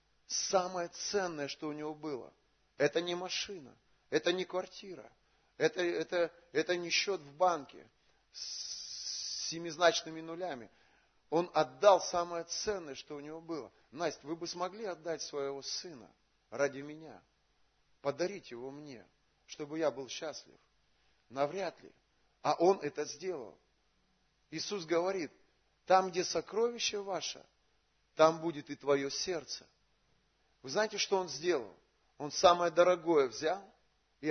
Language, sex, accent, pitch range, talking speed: Russian, male, native, 150-195 Hz, 125 wpm